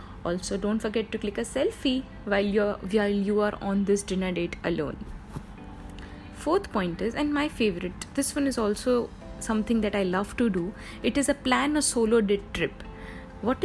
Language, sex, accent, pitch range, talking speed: English, female, Indian, 205-245 Hz, 175 wpm